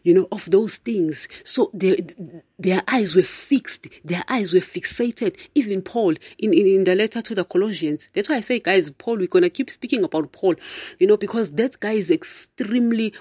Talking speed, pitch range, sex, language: 200 wpm, 185-260 Hz, female, English